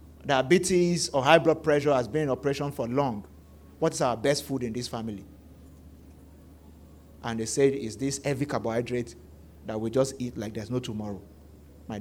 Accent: Nigerian